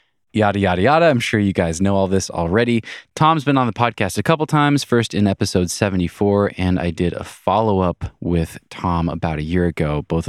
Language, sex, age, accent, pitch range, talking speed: English, male, 20-39, American, 85-120 Hz, 205 wpm